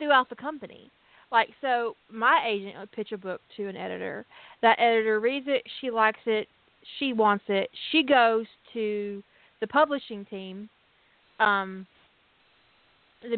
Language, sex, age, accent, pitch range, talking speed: English, female, 30-49, American, 200-240 Hz, 145 wpm